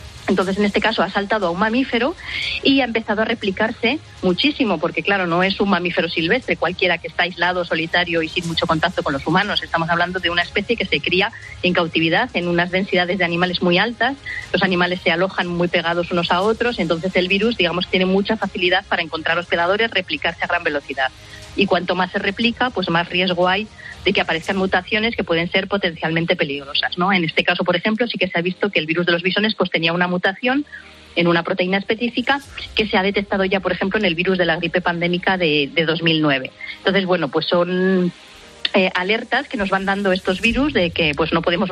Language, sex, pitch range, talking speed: Spanish, female, 170-200 Hz, 220 wpm